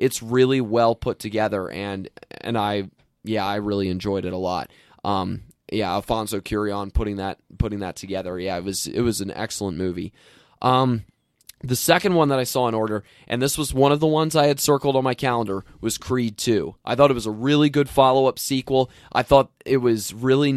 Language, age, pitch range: English, 20-39, 100-130 Hz